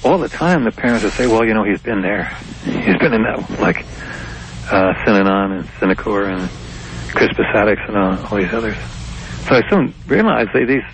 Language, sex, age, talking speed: English, male, 60-79, 195 wpm